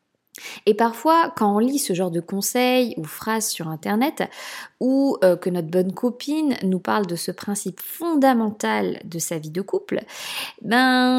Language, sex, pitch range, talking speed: French, female, 185-260 Hz, 160 wpm